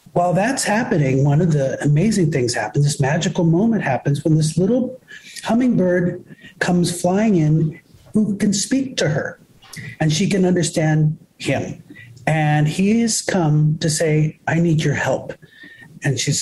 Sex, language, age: male, English, 40-59